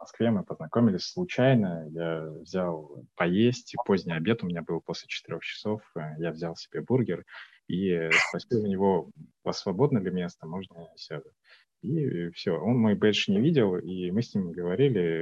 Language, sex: Russian, male